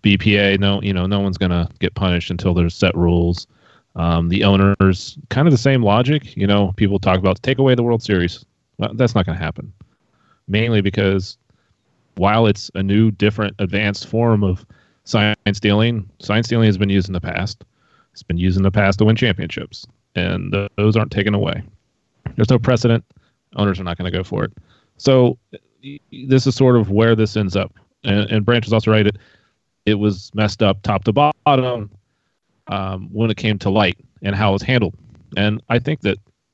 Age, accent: 30-49, American